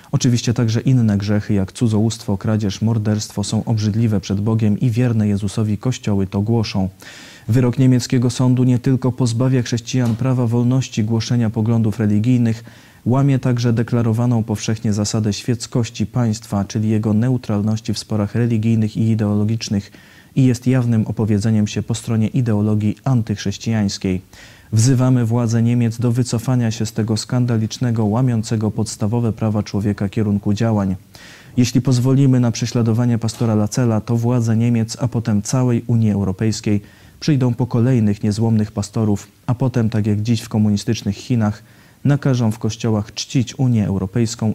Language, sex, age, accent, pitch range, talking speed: Polish, male, 20-39, native, 105-120 Hz, 135 wpm